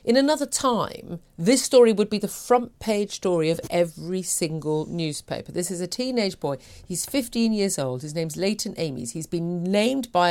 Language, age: English, 40-59